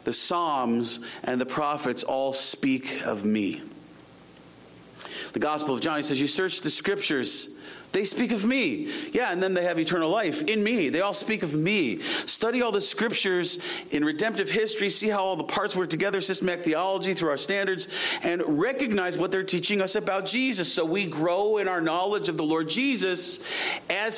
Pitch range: 150-220 Hz